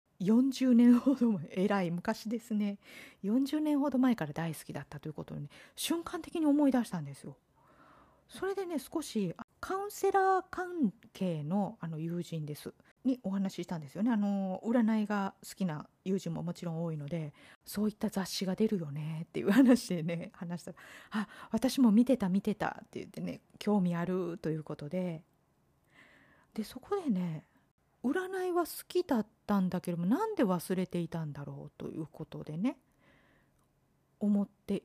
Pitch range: 170-250 Hz